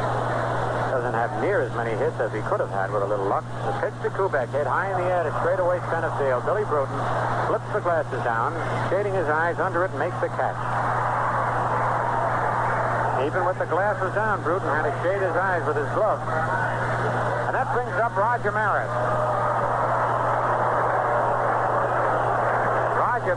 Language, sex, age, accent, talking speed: English, male, 60-79, American, 160 wpm